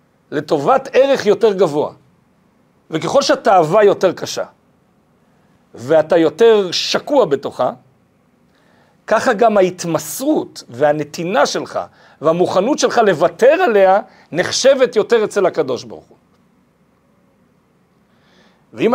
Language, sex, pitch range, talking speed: Hebrew, male, 175-235 Hz, 90 wpm